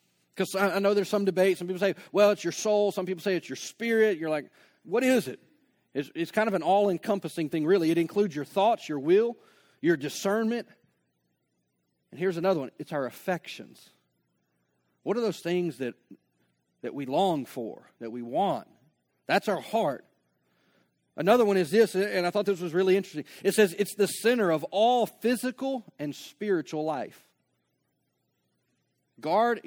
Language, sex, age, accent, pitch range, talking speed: English, male, 40-59, American, 165-205 Hz, 170 wpm